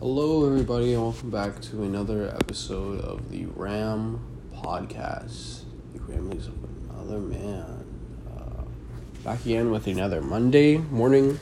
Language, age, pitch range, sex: English, 20-39, 100-125 Hz, male